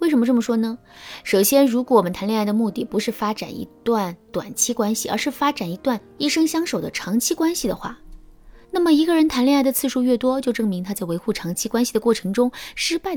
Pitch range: 195-275 Hz